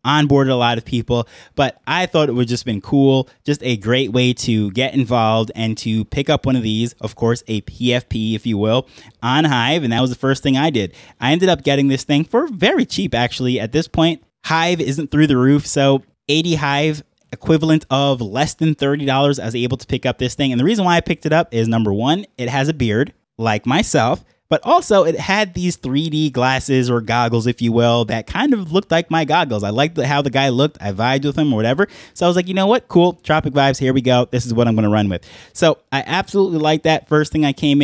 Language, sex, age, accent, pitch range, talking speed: English, male, 20-39, American, 120-150 Hz, 245 wpm